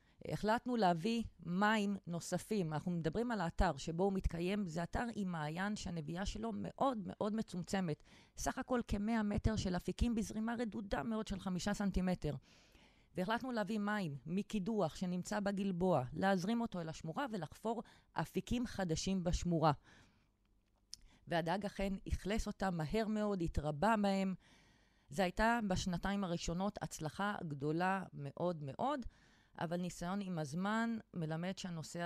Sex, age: female, 30-49